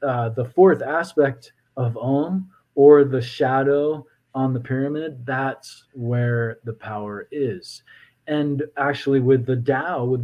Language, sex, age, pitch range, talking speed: English, male, 20-39, 120-140 Hz, 130 wpm